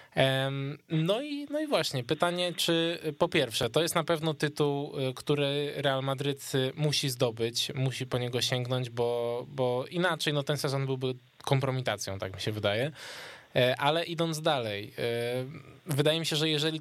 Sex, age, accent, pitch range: male, 20-39, native, 120-150 Hz